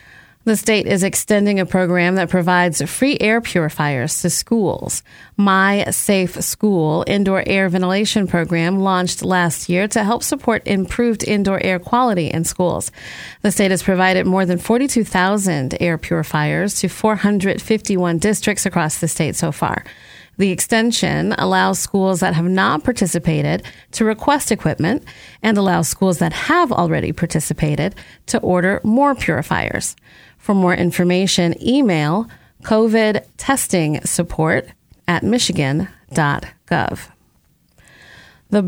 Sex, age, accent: female, 30-49, American